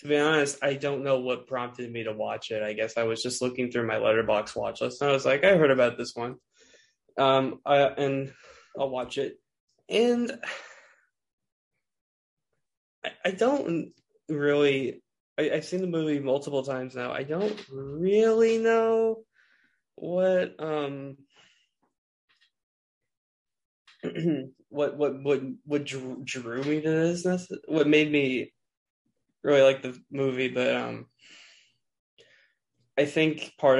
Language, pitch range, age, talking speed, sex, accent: English, 120-145 Hz, 20-39, 140 wpm, male, American